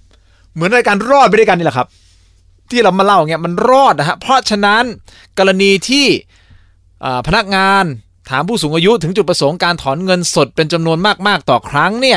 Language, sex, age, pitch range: Thai, male, 20-39, 95-160 Hz